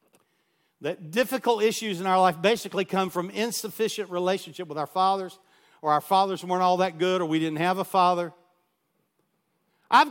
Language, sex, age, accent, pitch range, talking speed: English, male, 50-69, American, 155-205 Hz, 165 wpm